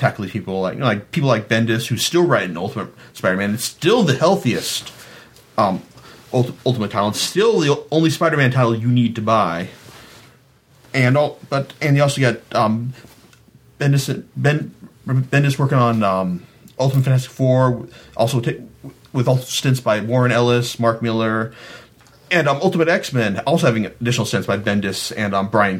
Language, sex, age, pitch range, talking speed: English, male, 30-49, 115-150 Hz, 165 wpm